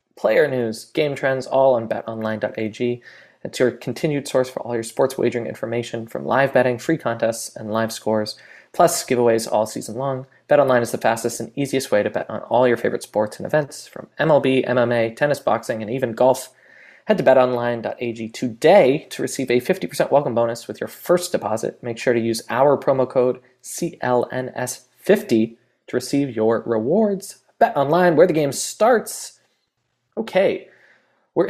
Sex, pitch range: male, 115-140 Hz